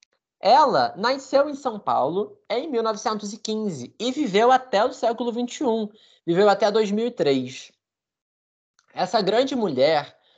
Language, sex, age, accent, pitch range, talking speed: Portuguese, male, 20-39, Brazilian, 180-240 Hz, 110 wpm